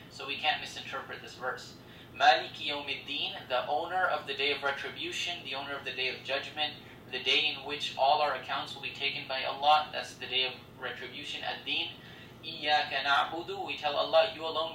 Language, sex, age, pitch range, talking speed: Arabic, male, 20-39, 125-150 Hz, 195 wpm